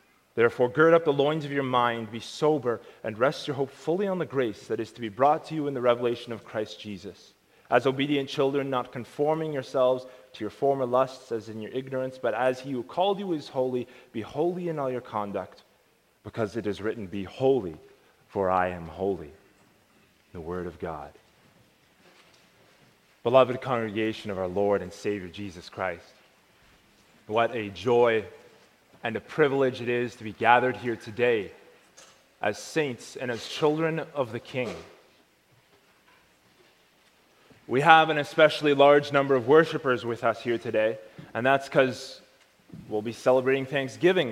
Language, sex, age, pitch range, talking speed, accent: English, male, 30-49, 115-155 Hz, 165 wpm, American